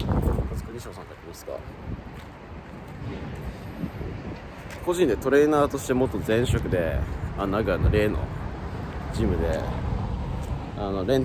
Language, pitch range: Japanese, 85-115 Hz